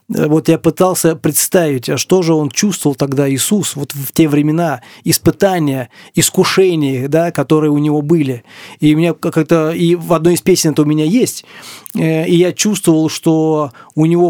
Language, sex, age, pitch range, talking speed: Russian, male, 30-49, 150-180 Hz, 170 wpm